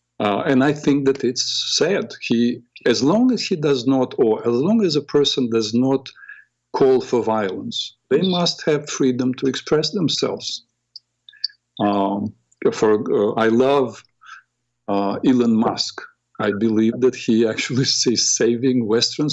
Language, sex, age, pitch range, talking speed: English, male, 50-69, 115-155 Hz, 150 wpm